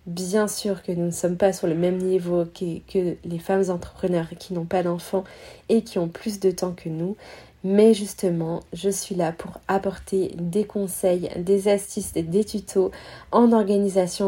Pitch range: 180-200 Hz